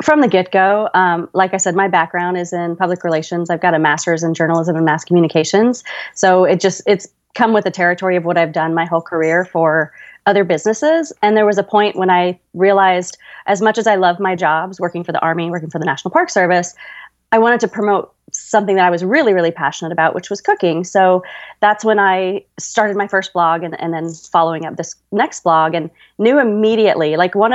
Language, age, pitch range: English, 30-49, 170-210 Hz